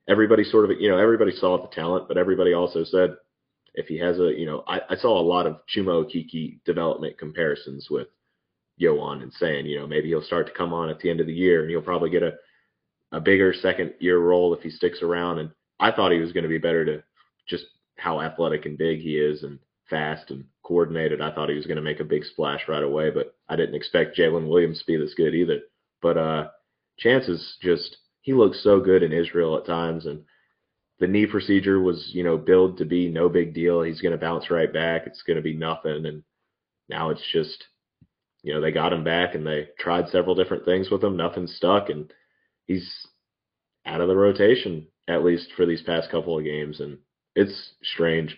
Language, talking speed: English, 220 wpm